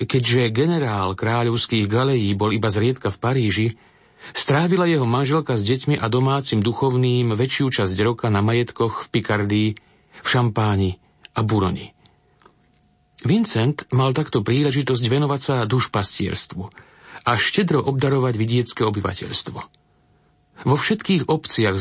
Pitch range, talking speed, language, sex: 110-145 Hz, 120 wpm, Slovak, male